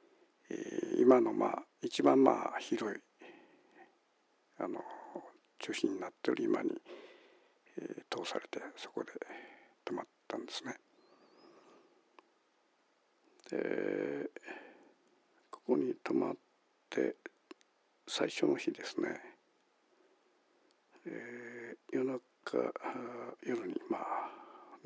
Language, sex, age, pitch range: Japanese, male, 60-79, 350-430 Hz